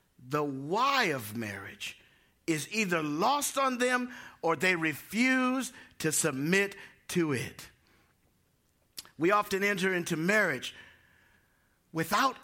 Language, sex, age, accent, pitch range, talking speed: English, male, 50-69, American, 165-230 Hz, 105 wpm